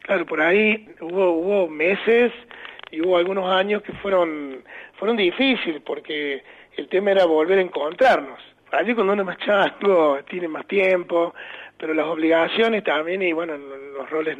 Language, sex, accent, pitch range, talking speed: Spanish, male, Argentinian, 150-195 Hz, 160 wpm